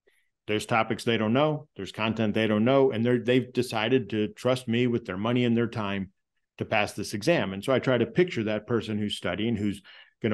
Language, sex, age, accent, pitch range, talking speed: English, male, 40-59, American, 105-125 Hz, 220 wpm